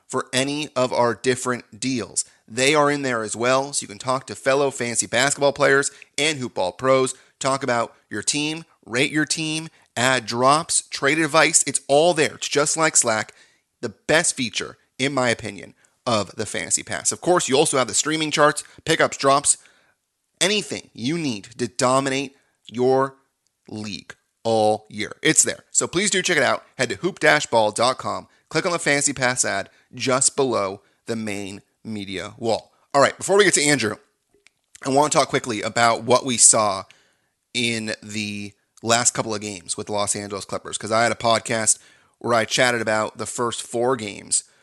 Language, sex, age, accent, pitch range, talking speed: English, male, 30-49, American, 110-140 Hz, 180 wpm